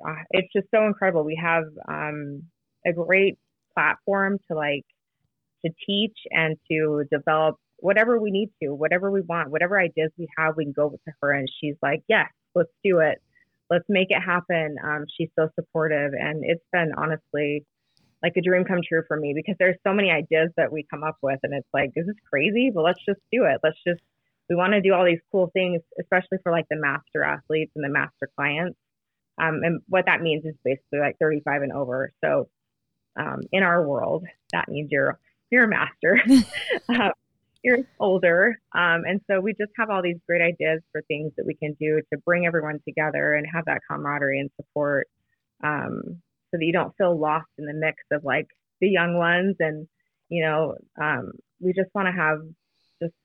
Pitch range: 150-185 Hz